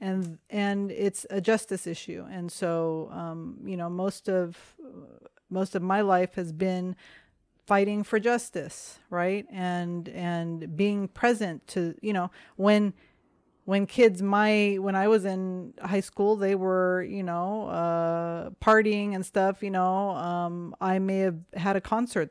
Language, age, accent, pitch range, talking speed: English, 30-49, American, 175-205 Hz, 155 wpm